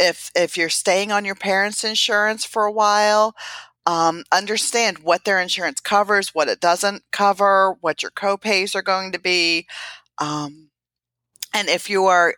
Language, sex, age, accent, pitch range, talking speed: English, female, 40-59, American, 150-200 Hz, 160 wpm